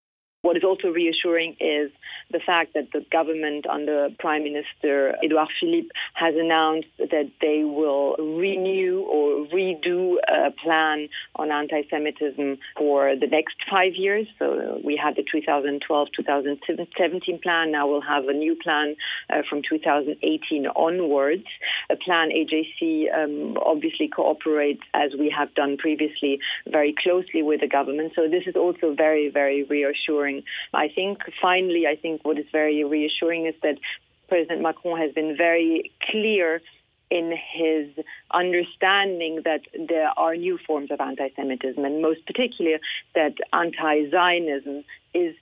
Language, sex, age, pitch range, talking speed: English, female, 40-59, 150-170 Hz, 135 wpm